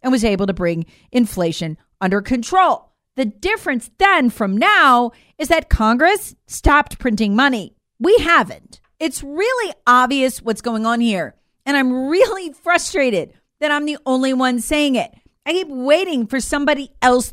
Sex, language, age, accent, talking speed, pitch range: female, English, 40-59, American, 155 wpm, 210-295 Hz